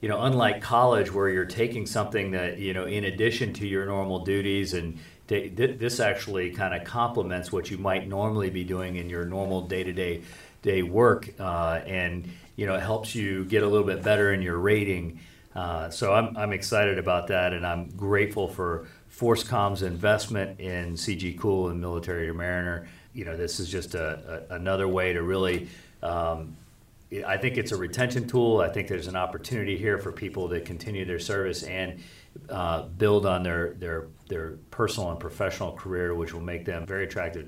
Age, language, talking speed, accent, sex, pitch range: 40-59, English, 190 wpm, American, male, 90-115 Hz